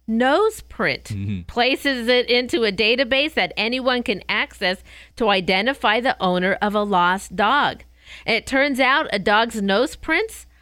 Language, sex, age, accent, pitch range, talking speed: English, female, 50-69, American, 185-245 Hz, 145 wpm